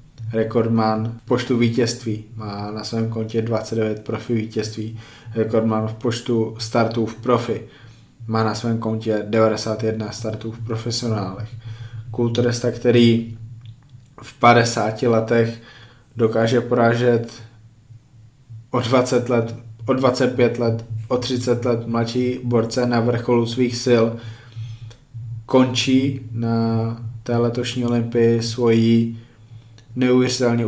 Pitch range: 115-120 Hz